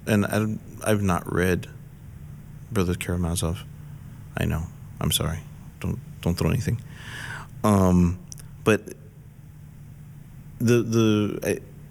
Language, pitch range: English, 85-120 Hz